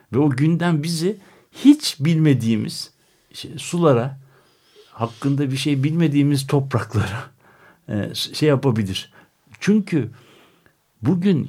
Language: Turkish